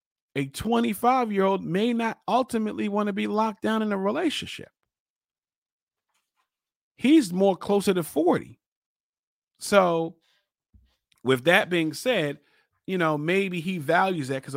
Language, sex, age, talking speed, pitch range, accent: English, male, 40-59, 130 wpm, 135-195 Hz, American